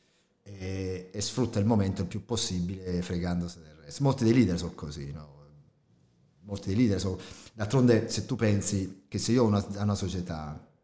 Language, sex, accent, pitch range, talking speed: Italian, male, native, 95-115 Hz, 175 wpm